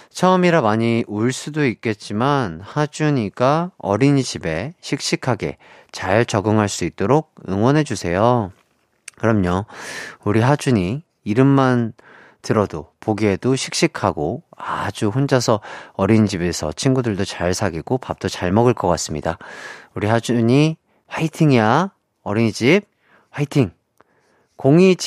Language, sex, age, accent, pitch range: Korean, male, 30-49, native, 100-135 Hz